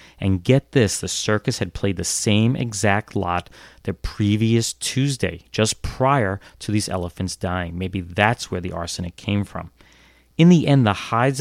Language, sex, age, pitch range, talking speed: English, male, 30-49, 90-110 Hz, 170 wpm